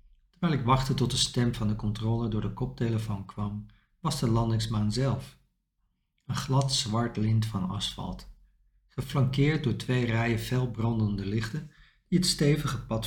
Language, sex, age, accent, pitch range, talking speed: Dutch, male, 50-69, Dutch, 110-130 Hz, 150 wpm